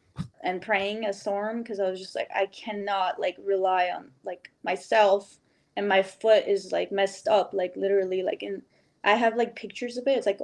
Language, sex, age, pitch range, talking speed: English, female, 10-29, 205-245 Hz, 200 wpm